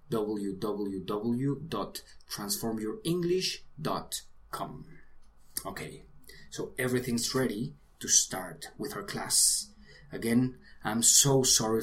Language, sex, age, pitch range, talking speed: English, male, 20-39, 100-140 Hz, 70 wpm